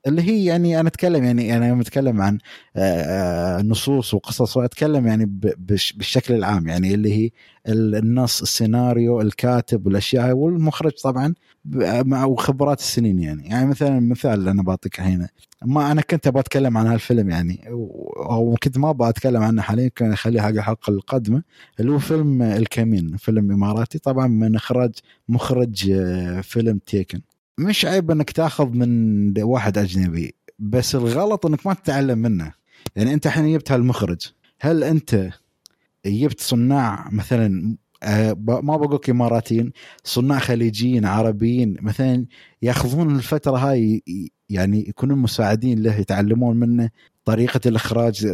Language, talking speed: Arabic, 135 wpm